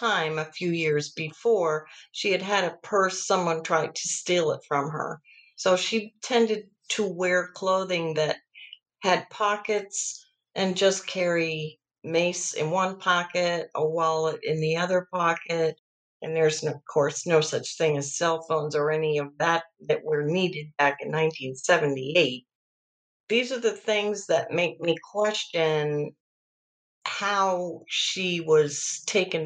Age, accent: 50-69, American